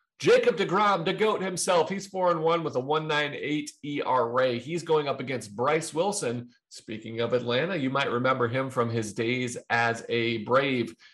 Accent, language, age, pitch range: American, English, 40-59, 120-170 Hz